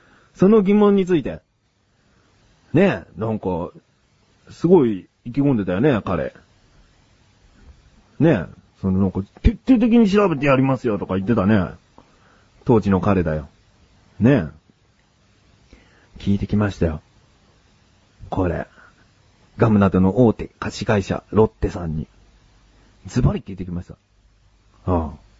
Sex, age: male, 40-59